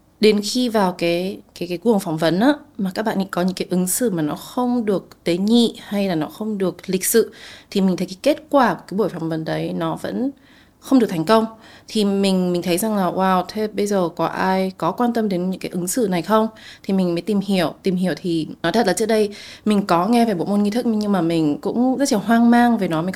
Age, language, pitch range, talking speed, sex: 20-39, Vietnamese, 175-215 Hz, 265 wpm, female